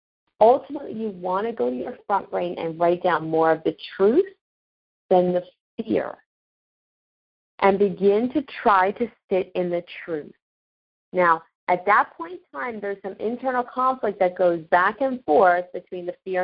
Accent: American